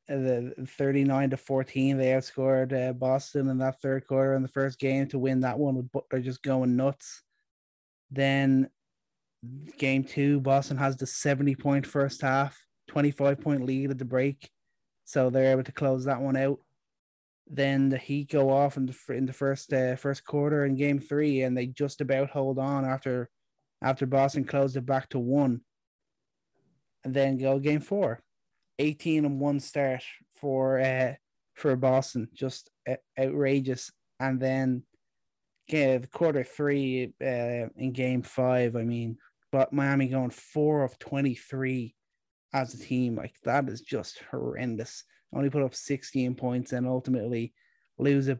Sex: male